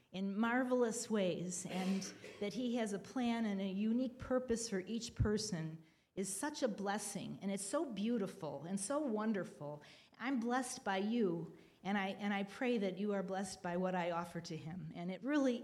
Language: English